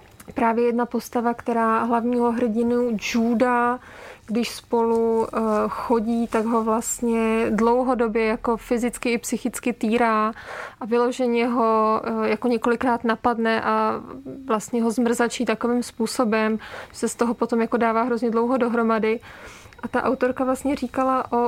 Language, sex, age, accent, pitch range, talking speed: Czech, female, 20-39, native, 225-250 Hz, 130 wpm